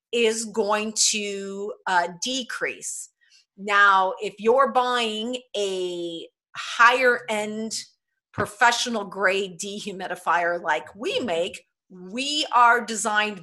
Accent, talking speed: American, 95 wpm